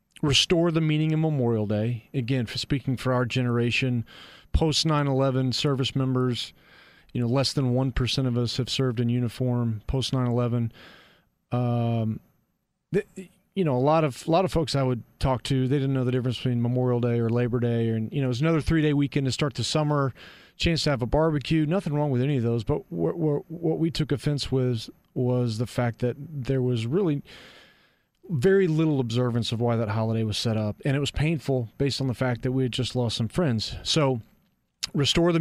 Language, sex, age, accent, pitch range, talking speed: English, male, 40-59, American, 120-150 Hz, 210 wpm